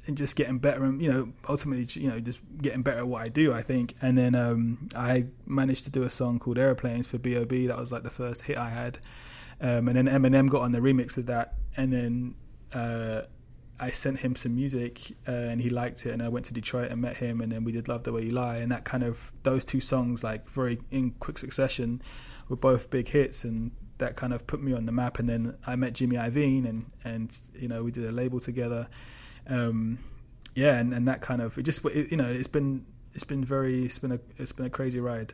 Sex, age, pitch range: male, 20-39, 115-130 Hz